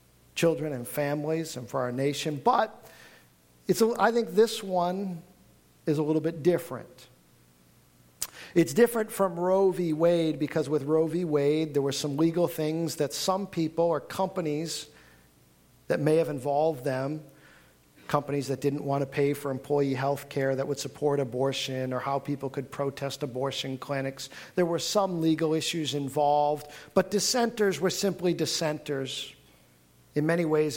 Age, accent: 50-69, American